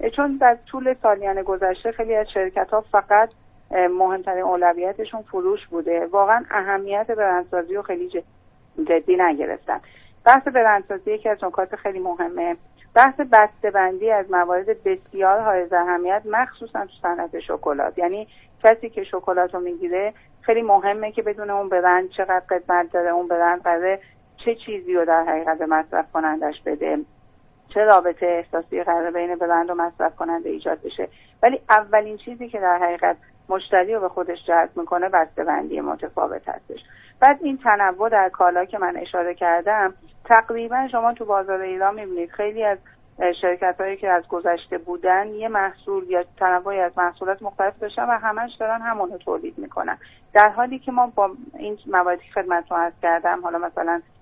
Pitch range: 175-215 Hz